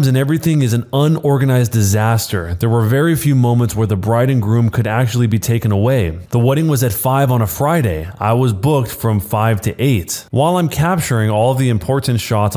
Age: 20-39